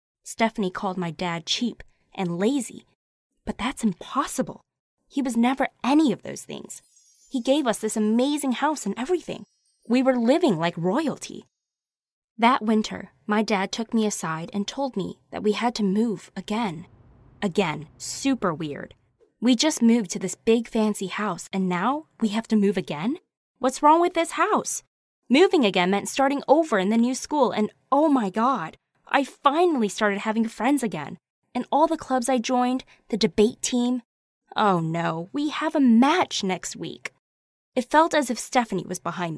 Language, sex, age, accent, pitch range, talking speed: English, female, 20-39, American, 200-275 Hz, 170 wpm